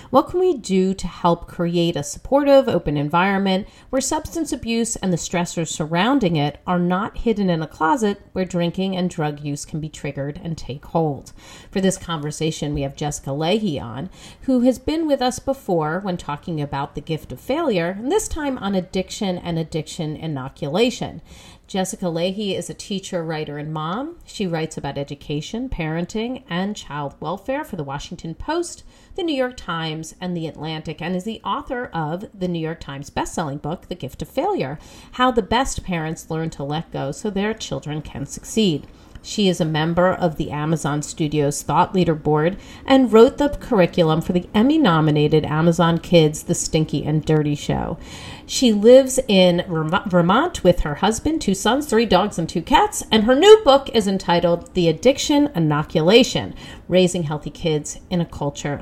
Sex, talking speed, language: female, 180 wpm, English